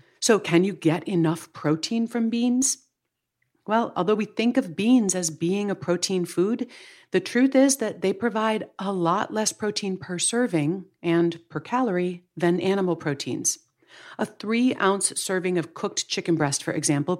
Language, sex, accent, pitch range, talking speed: English, female, American, 165-220 Hz, 160 wpm